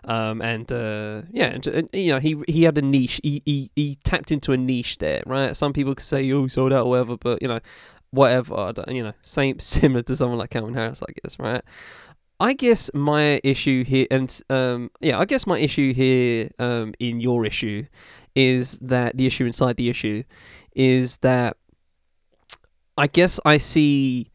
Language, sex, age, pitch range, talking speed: English, male, 10-29, 115-140 Hz, 190 wpm